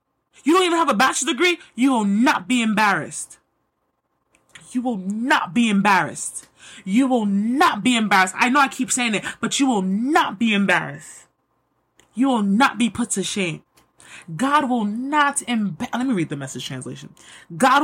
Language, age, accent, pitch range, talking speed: English, 20-39, American, 195-275 Hz, 175 wpm